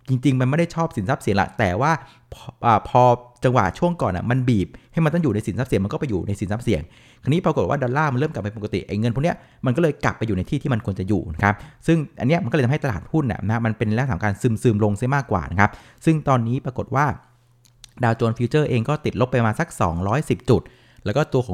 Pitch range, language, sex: 105-135 Hz, Thai, male